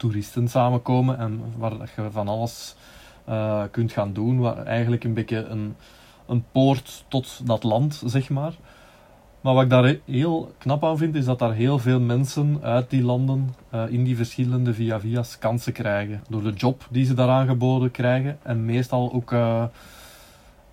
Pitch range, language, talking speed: 115-135 Hz, Dutch, 170 wpm